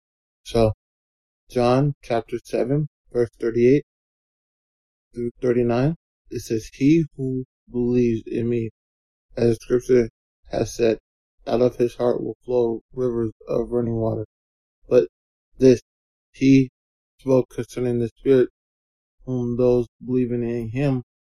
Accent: American